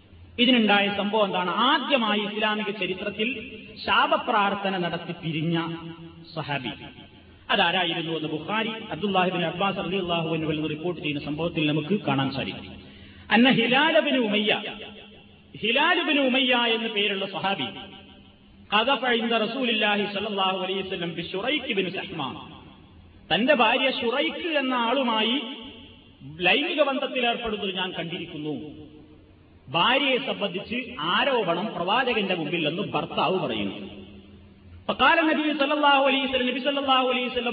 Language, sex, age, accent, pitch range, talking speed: Malayalam, male, 40-59, native, 170-230 Hz, 70 wpm